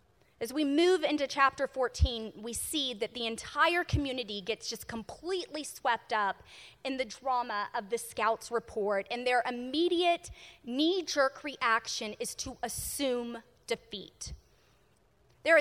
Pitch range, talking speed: 240-320 Hz, 130 wpm